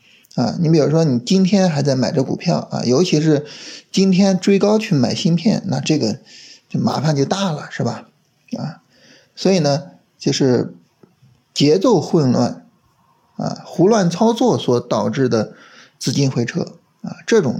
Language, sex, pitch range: Chinese, male, 135-195 Hz